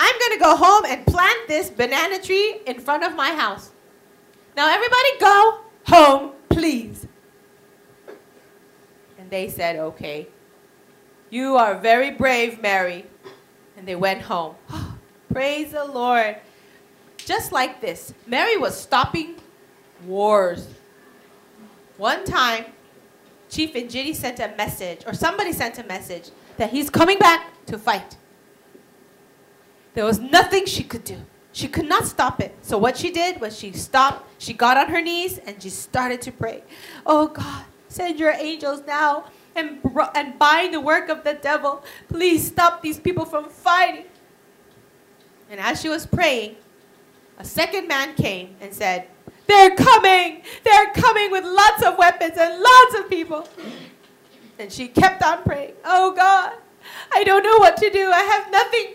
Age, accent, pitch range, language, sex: 30-49, American, 235-370 Hz, Korean, female